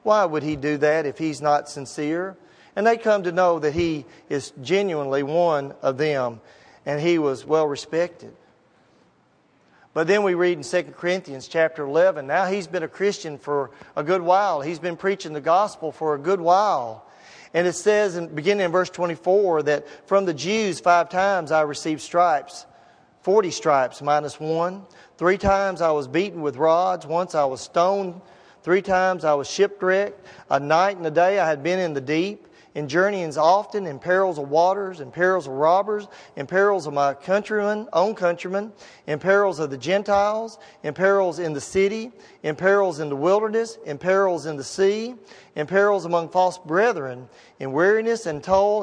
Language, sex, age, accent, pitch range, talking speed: English, male, 40-59, American, 155-200 Hz, 185 wpm